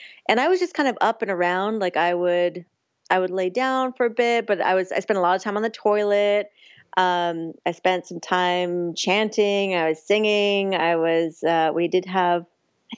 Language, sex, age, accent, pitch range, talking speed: English, female, 30-49, American, 170-215 Hz, 215 wpm